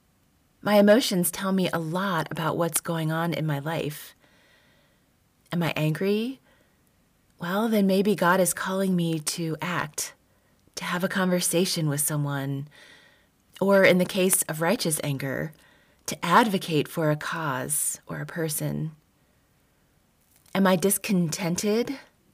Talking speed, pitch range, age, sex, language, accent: 130 wpm, 150-185 Hz, 30-49, female, English, American